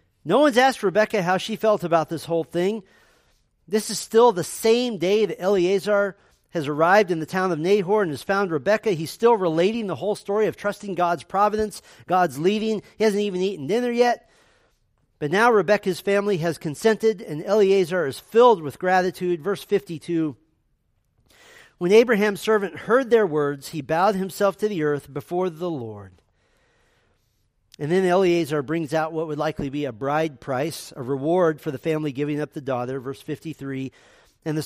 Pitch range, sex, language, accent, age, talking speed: 150-200 Hz, male, English, American, 40-59, 175 wpm